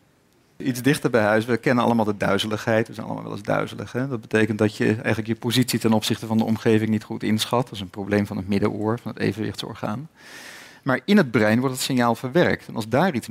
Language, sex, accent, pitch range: Dutch, male, Dutch, 110-145 Hz